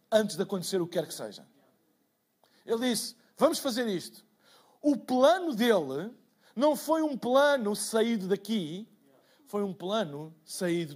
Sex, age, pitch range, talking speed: male, 50-69, 170-255 Hz, 140 wpm